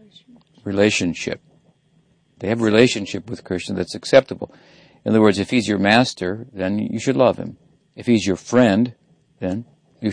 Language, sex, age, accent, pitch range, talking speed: English, male, 60-79, American, 95-120 Hz, 155 wpm